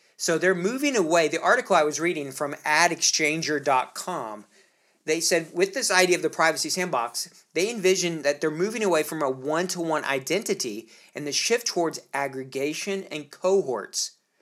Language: English